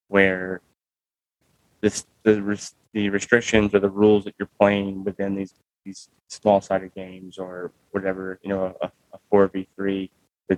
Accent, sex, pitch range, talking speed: American, male, 95-105 Hz, 135 wpm